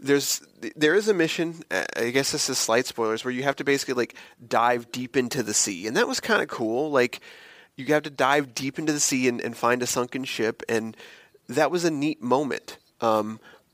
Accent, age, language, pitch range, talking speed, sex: American, 30-49, English, 120-160 Hz, 220 wpm, male